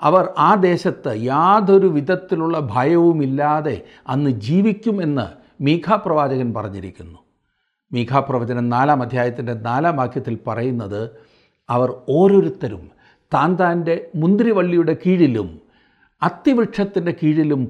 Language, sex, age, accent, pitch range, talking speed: Malayalam, male, 60-79, native, 125-185 Hz, 85 wpm